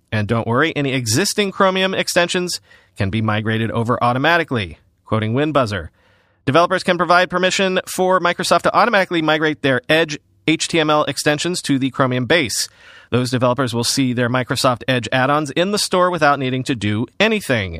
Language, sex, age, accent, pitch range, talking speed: English, male, 40-59, American, 125-170 Hz, 160 wpm